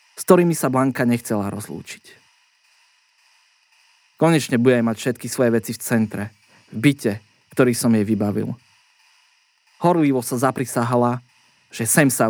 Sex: male